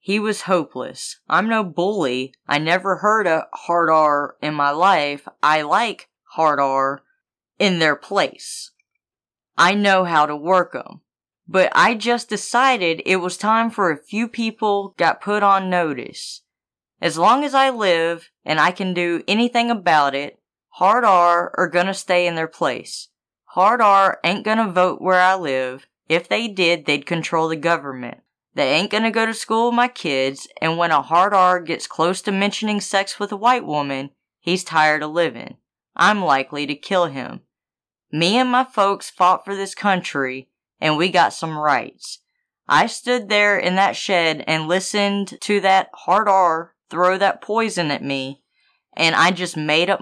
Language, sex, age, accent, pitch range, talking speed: English, female, 20-39, American, 160-210 Hz, 175 wpm